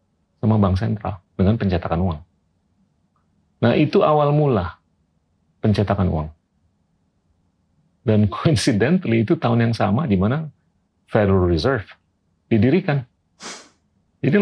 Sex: male